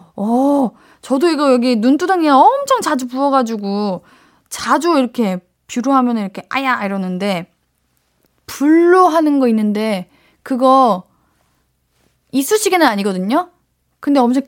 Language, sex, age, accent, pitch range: Korean, female, 20-39, native, 205-280 Hz